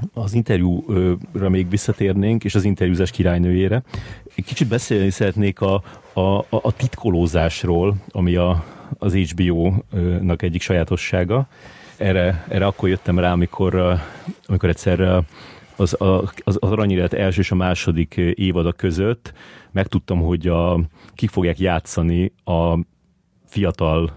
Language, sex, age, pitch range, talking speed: Hungarian, male, 30-49, 90-110 Hz, 120 wpm